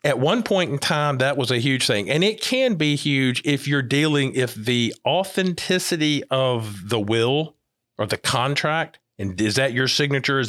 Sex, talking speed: male, 190 wpm